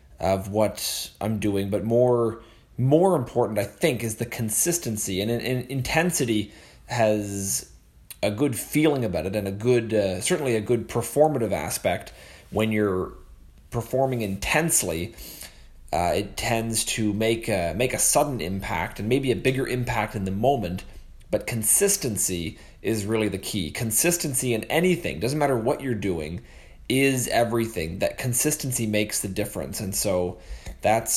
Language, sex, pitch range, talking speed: English, male, 95-120 Hz, 150 wpm